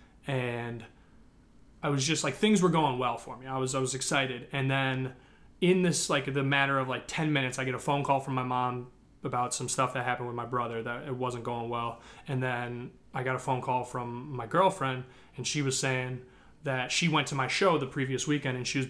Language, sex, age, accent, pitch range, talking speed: English, male, 20-39, American, 125-140 Hz, 235 wpm